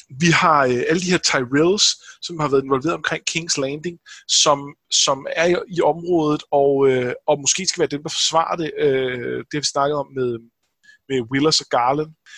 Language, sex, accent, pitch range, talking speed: Danish, male, native, 135-170 Hz, 200 wpm